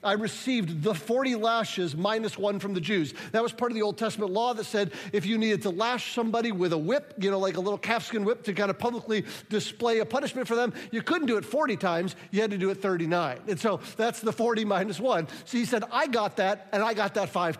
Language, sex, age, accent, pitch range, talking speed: English, male, 50-69, American, 195-245 Hz, 255 wpm